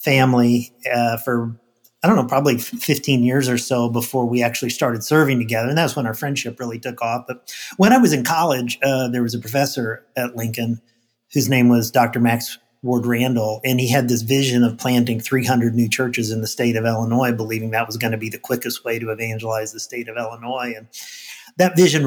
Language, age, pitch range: English, 40-59, 115-130 Hz